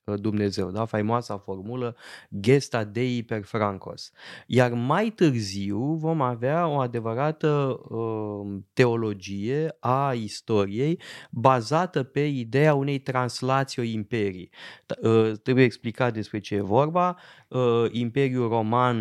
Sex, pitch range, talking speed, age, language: male, 110-135 Hz, 110 wpm, 20-39, Romanian